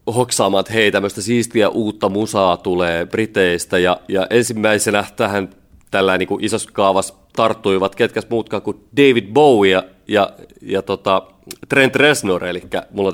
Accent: native